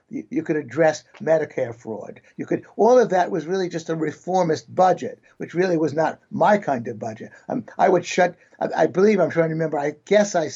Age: 60-79